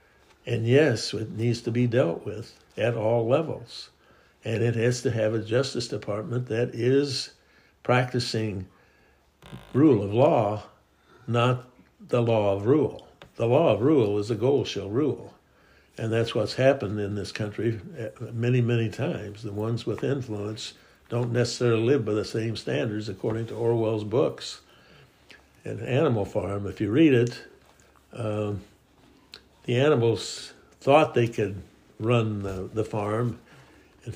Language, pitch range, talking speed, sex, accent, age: English, 105-120 Hz, 145 wpm, male, American, 60-79